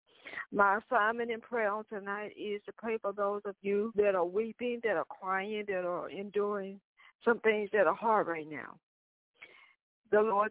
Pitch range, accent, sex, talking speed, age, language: 195-235 Hz, American, female, 170 wpm, 60-79, English